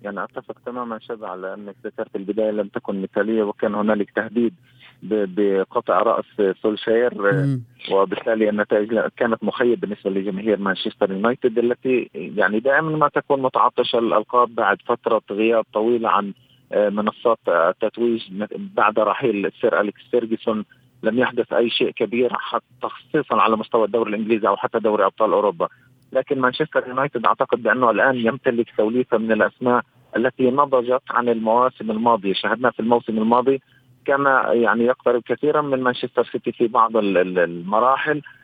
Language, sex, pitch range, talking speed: Arabic, male, 110-130 Hz, 140 wpm